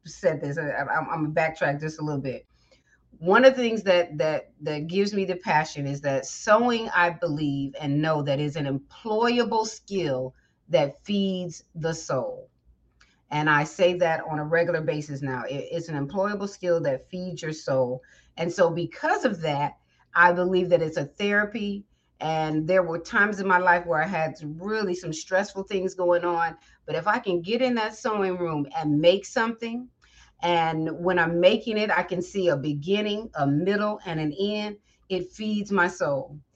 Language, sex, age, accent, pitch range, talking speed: English, female, 30-49, American, 160-205 Hz, 185 wpm